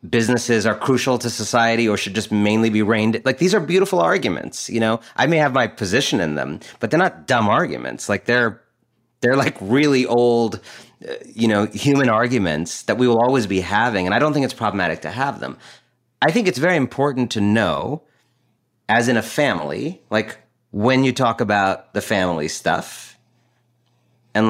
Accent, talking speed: American, 185 wpm